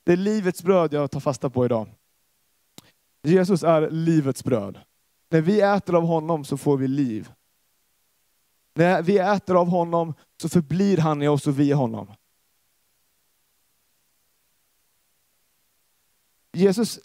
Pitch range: 140-190 Hz